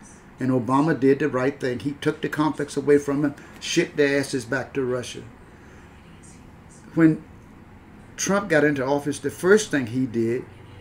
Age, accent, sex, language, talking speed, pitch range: 50-69, American, male, English, 160 wpm, 120-150 Hz